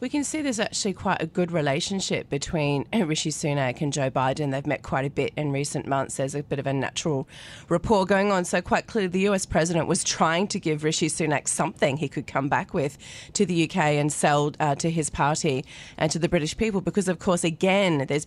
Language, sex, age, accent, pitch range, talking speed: English, female, 30-49, Australian, 145-175 Hz, 225 wpm